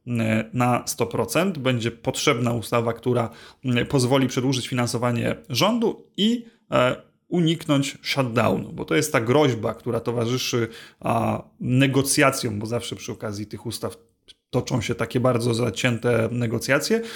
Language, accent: Polish, native